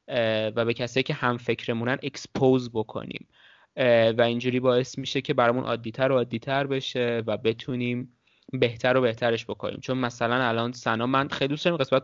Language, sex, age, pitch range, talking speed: Persian, male, 20-39, 115-140 Hz, 155 wpm